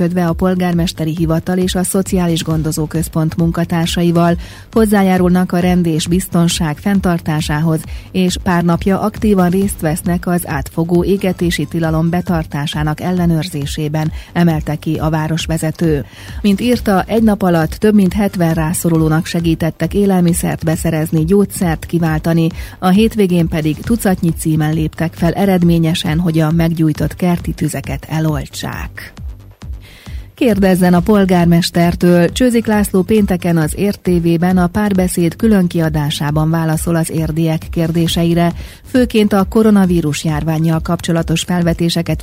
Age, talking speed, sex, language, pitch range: 30-49, 115 wpm, female, Hungarian, 160-185 Hz